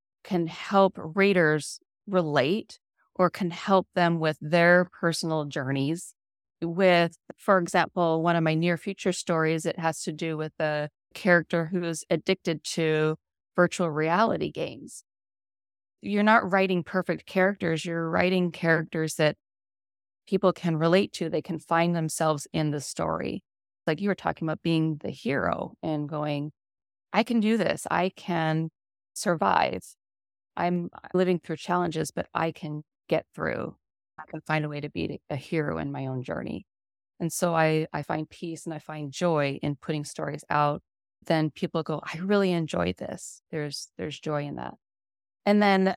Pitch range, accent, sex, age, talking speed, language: 150-180 Hz, American, female, 30-49, 160 wpm, English